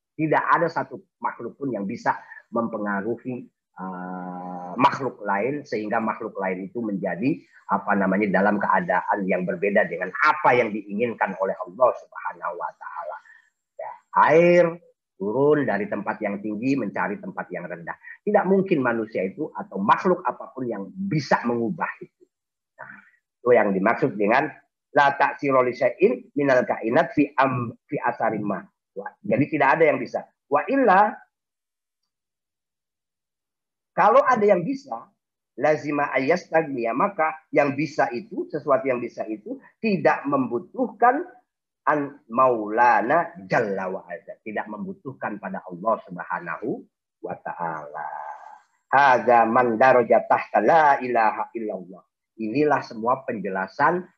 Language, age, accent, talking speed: Indonesian, 40-59, native, 120 wpm